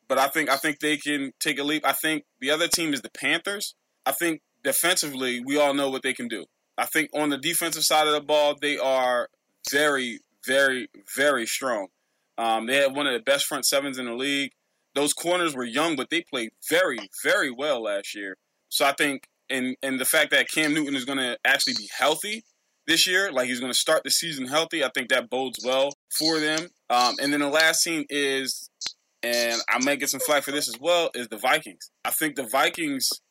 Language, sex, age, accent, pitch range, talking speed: English, male, 20-39, American, 130-175 Hz, 220 wpm